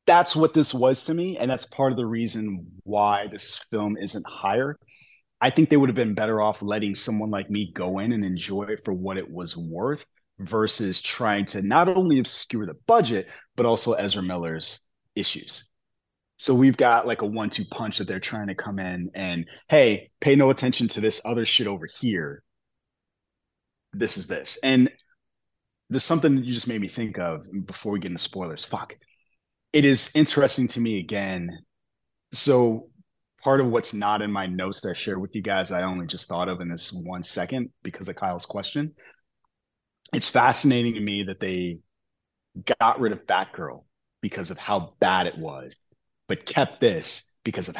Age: 30-49